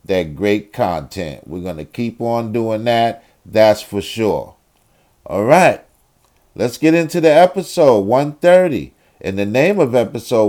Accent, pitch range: American, 105-130 Hz